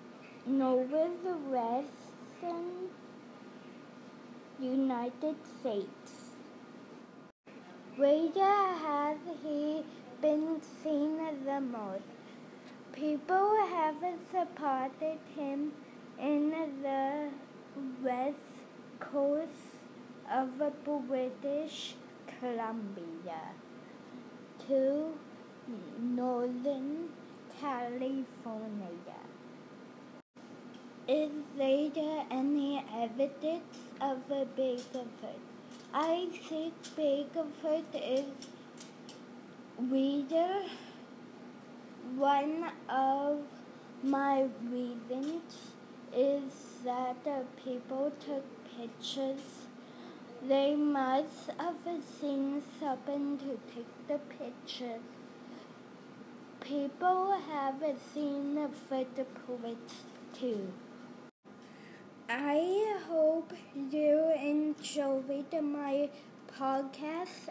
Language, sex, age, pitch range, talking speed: English, female, 20-39, 255-295 Hz, 60 wpm